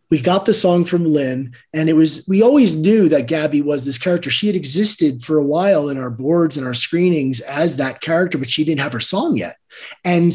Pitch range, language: 145-185 Hz, English